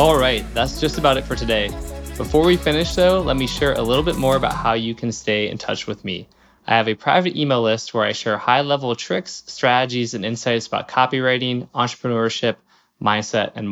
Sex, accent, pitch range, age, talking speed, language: male, American, 110-135 Hz, 20-39, 205 wpm, English